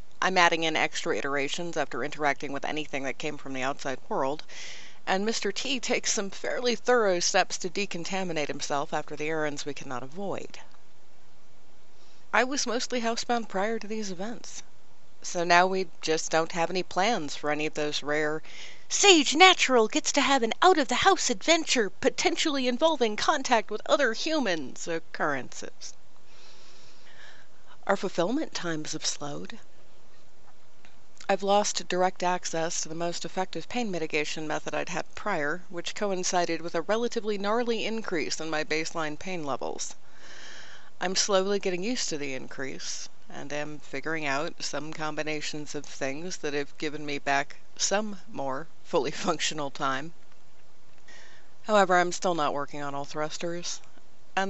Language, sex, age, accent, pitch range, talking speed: English, female, 40-59, American, 150-215 Hz, 150 wpm